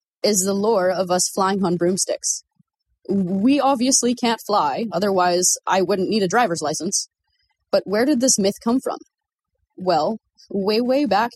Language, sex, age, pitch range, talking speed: English, female, 20-39, 185-260 Hz, 160 wpm